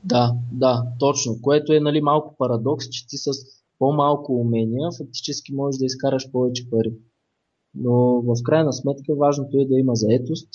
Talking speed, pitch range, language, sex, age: 160 wpm, 120-150 Hz, Bulgarian, male, 20-39